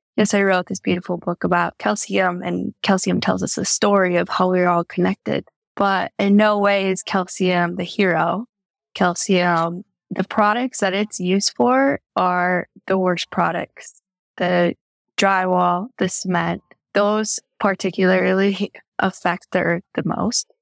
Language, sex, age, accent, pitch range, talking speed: English, female, 10-29, American, 175-200 Hz, 145 wpm